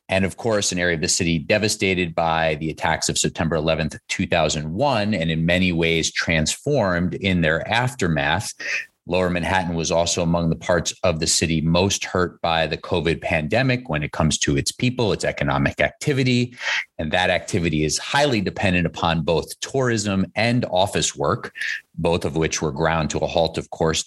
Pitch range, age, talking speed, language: 80-105 Hz, 30-49, 175 wpm, English